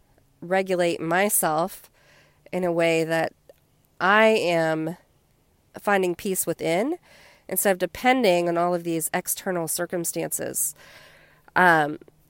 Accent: American